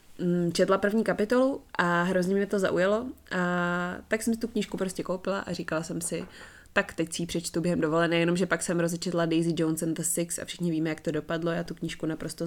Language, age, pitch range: Czech, 20-39, 160-190 Hz